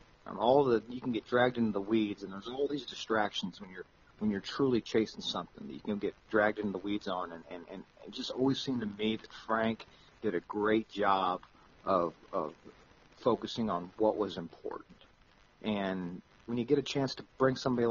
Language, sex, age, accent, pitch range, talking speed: English, male, 40-59, American, 100-125 Hz, 210 wpm